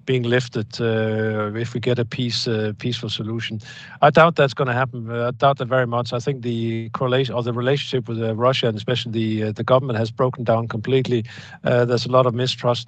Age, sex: 50-69, male